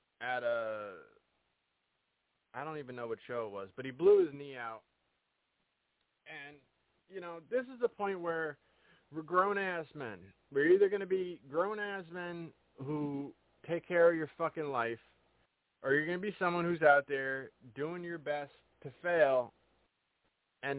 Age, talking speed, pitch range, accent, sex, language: 30-49, 160 wpm, 115-165 Hz, American, male, English